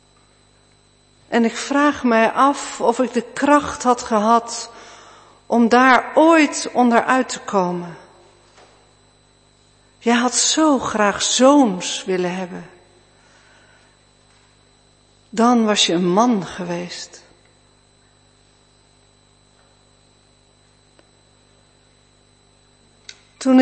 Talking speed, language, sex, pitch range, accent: 80 wpm, Dutch, female, 185-255 Hz, Dutch